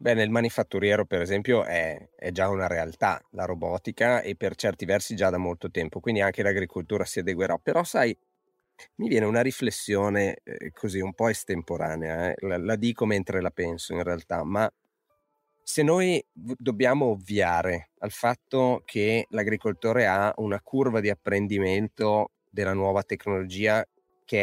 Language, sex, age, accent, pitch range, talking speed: Italian, male, 30-49, native, 95-125 Hz, 155 wpm